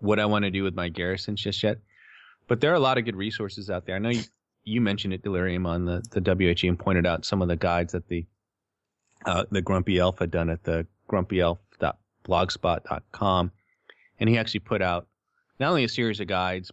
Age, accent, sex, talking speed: 30-49, American, male, 215 wpm